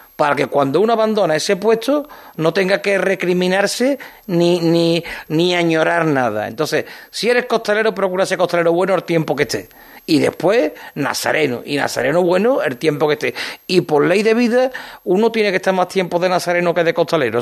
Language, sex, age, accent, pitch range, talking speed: Spanish, male, 40-59, Spanish, 140-195 Hz, 185 wpm